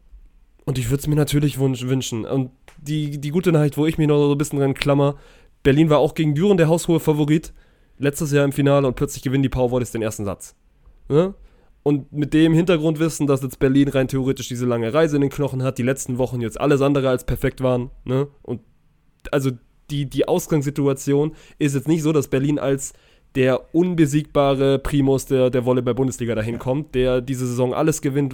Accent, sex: German, male